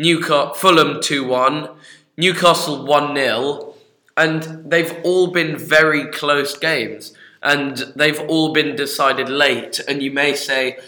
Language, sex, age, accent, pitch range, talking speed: English, male, 20-39, British, 130-150 Hz, 115 wpm